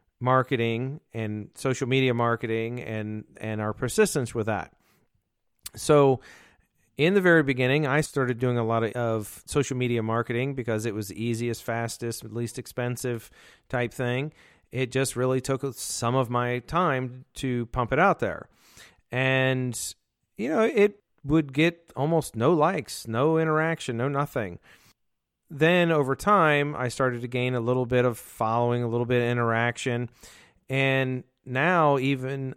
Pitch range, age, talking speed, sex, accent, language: 120-145 Hz, 40-59, 150 wpm, male, American, English